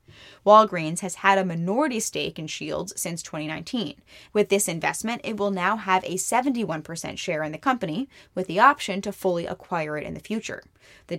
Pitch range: 170-210 Hz